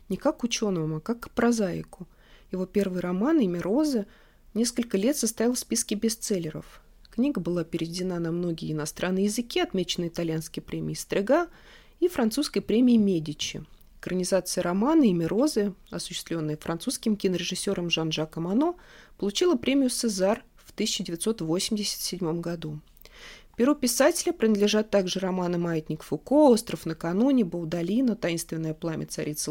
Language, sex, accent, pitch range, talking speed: Russian, female, native, 170-235 Hz, 125 wpm